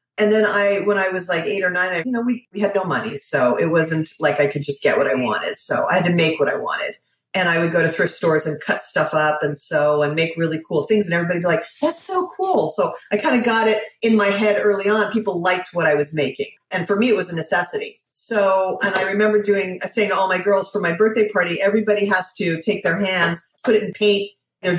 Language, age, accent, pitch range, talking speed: English, 40-59, American, 175-215 Hz, 270 wpm